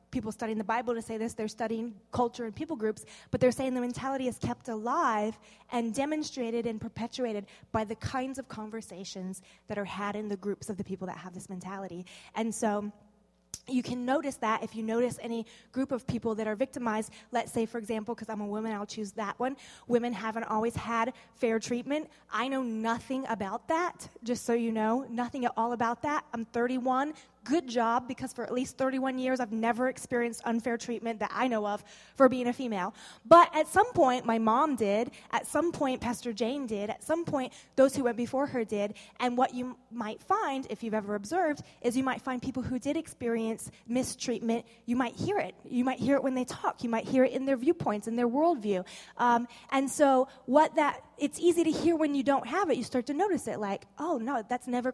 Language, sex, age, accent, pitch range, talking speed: English, female, 20-39, American, 220-260 Hz, 215 wpm